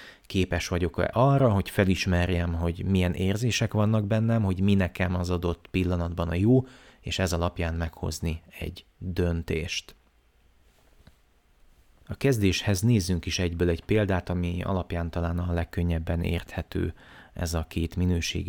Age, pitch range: 30-49, 85-105 Hz